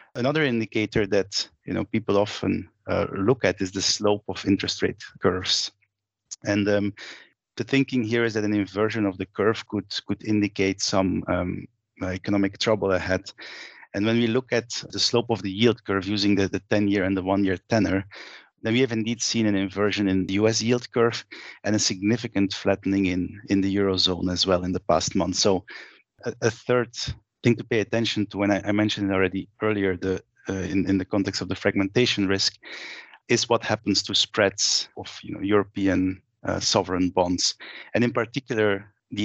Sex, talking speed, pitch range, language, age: male, 190 wpm, 95-110 Hz, English, 30-49